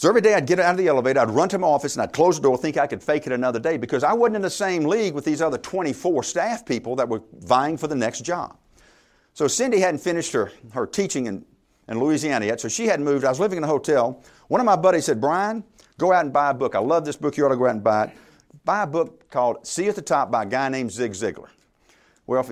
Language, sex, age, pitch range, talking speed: English, male, 50-69, 130-185 Hz, 280 wpm